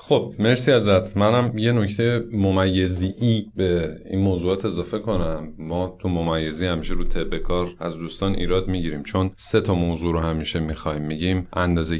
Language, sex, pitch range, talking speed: Persian, male, 80-95 Hz, 155 wpm